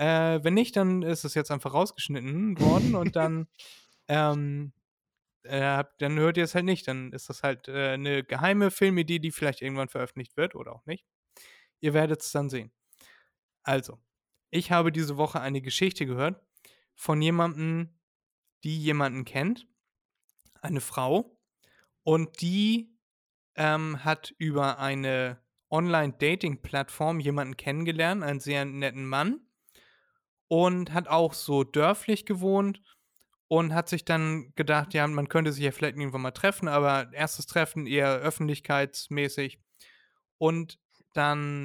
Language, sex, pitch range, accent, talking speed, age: German, male, 140-170 Hz, German, 135 wpm, 20-39